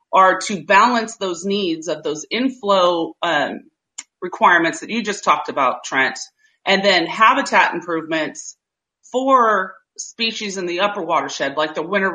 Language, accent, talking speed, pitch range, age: English, American, 145 wpm, 175-235 Hz, 30-49